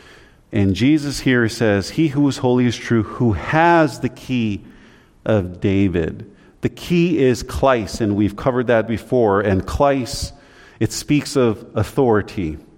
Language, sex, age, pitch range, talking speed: English, male, 40-59, 100-125 Hz, 145 wpm